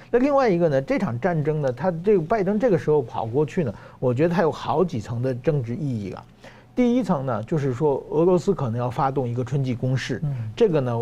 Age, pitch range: 50-69, 125-180 Hz